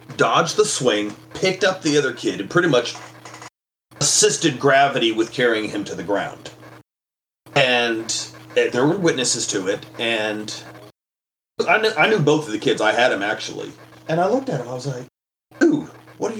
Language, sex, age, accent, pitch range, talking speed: English, male, 30-49, American, 115-165 Hz, 185 wpm